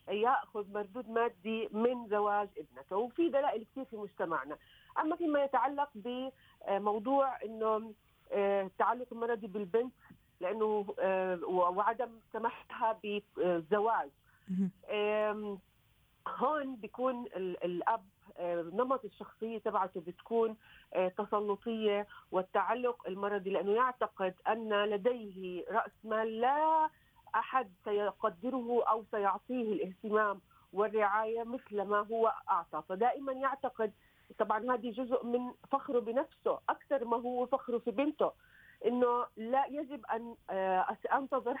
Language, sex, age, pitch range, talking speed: Arabic, female, 40-59, 205-245 Hz, 100 wpm